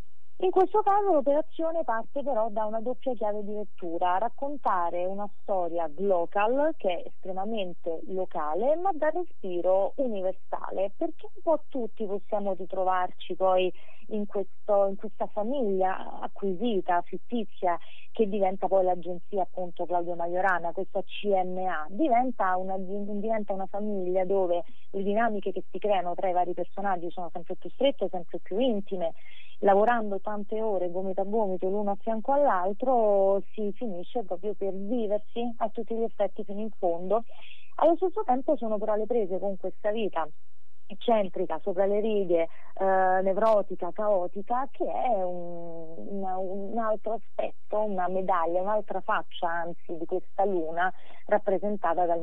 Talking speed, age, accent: 140 wpm, 30-49, native